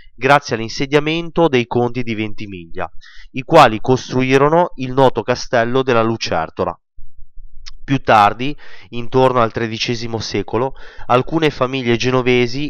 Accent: native